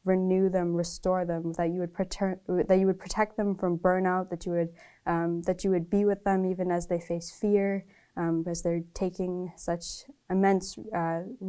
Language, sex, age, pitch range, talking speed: English, female, 10-29, 165-185 Hz, 195 wpm